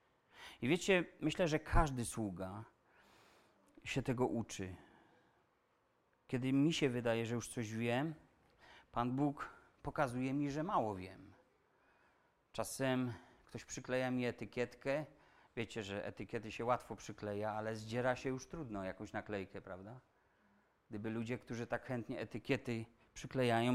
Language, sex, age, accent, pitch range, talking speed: Polish, male, 40-59, native, 115-150 Hz, 125 wpm